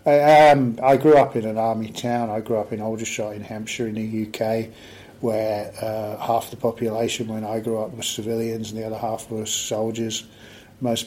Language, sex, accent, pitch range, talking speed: English, male, British, 110-120 Hz, 200 wpm